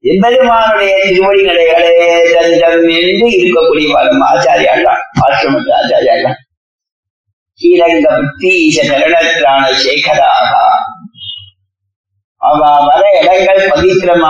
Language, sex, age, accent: Tamil, male, 50-69, native